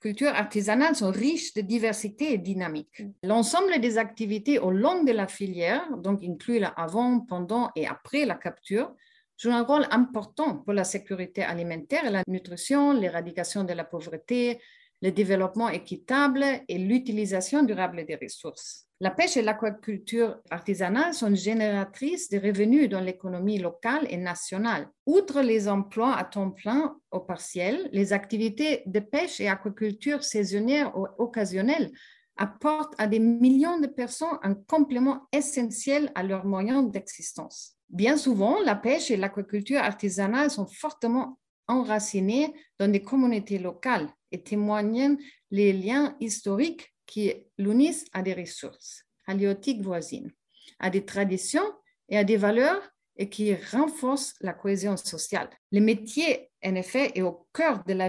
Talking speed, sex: 145 wpm, female